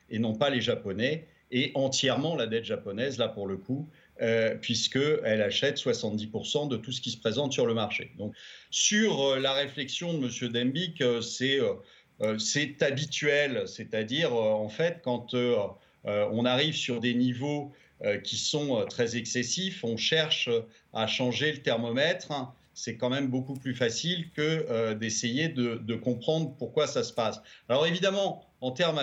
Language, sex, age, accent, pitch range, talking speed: French, male, 50-69, French, 115-145 Hz, 175 wpm